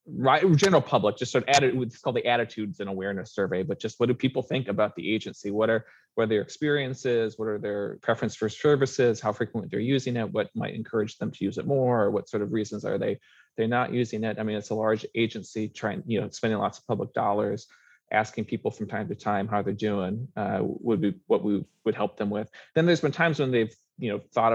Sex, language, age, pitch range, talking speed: male, English, 20-39, 105-125 Hz, 245 wpm